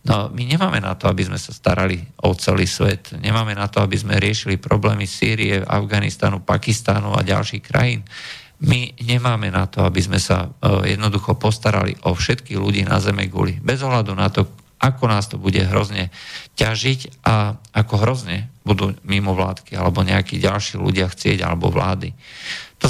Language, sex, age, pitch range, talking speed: Slovak, male, 50-69, 95-120 Hz, 170 wpm